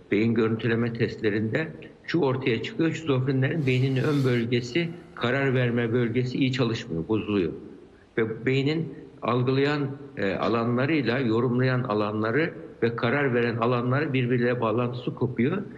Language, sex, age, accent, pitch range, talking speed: Turkish, male, 60-79, native, 115-140 Hz, 110 wpm